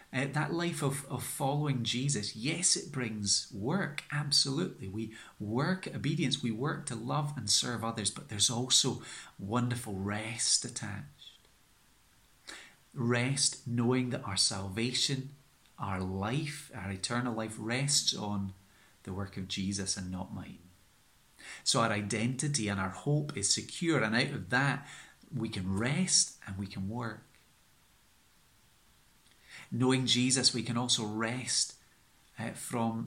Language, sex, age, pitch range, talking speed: English, male, 30-49, 110-135 Hz, 130 wpm